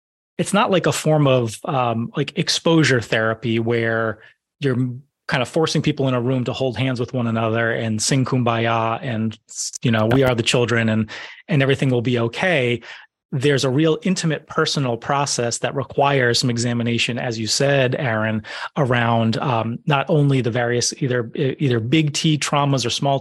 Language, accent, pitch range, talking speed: English, American, 115-145 Hz, 175 wpm